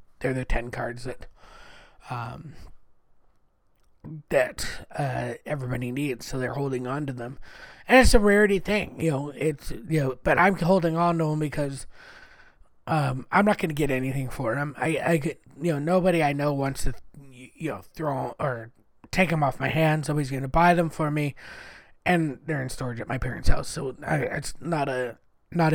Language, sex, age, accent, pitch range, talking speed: English, male, 20-39, American, 135-165 Hz, 195 wpm